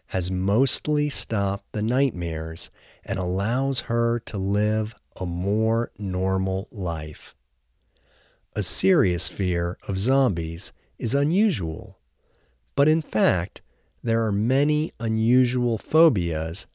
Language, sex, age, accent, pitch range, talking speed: English, male, 40-59, American, 85-125 Hz, 105 wpm